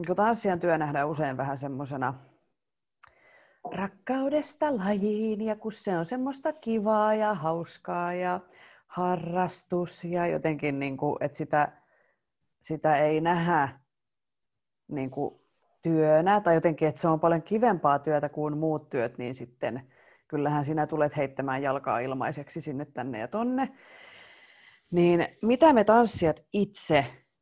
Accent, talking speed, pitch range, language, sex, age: native, 125 wpm, 145-185 Hz, Finnish, female, 30-49